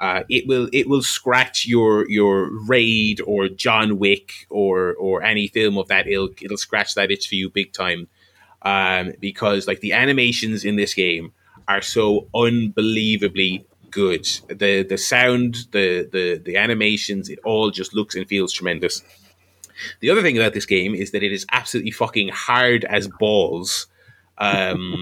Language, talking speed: English, 165 wpm